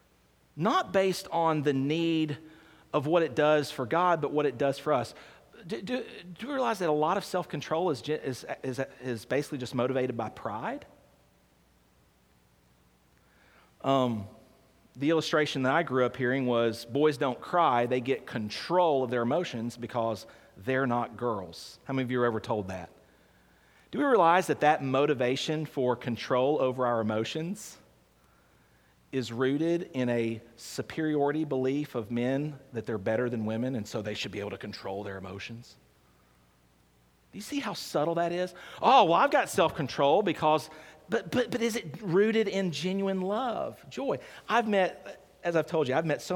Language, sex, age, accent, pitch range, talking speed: English, male, 40-59, American, 115-180 Hz, 170 wpm